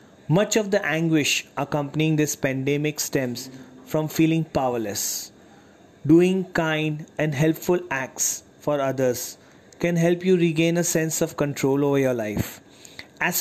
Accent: Indian